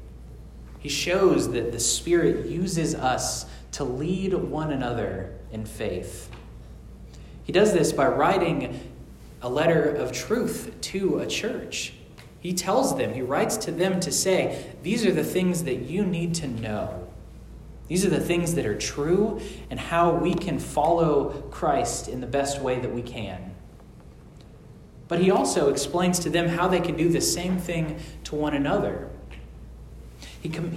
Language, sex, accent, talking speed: English, male, American, 155 wpm